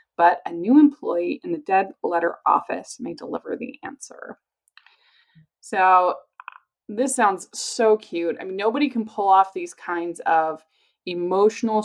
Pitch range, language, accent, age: 170-230 Hz, English, American, 20-39